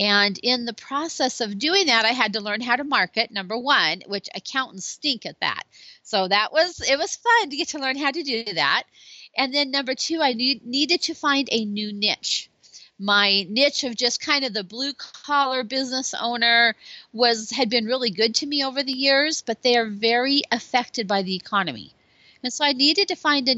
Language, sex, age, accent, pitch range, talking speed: English, female, 40-59, American, 210-275 Hz, 210 wpm